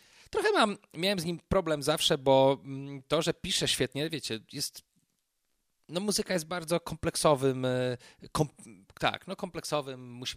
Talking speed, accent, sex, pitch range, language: 140 wpm, native, male, 120-145 Hz, Polish